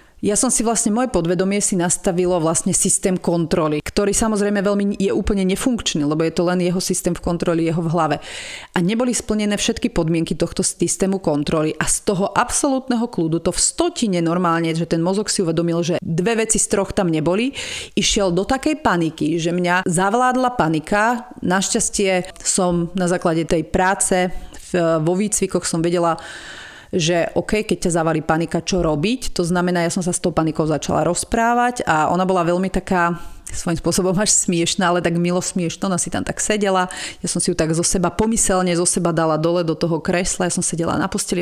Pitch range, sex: 170-200 Hz, female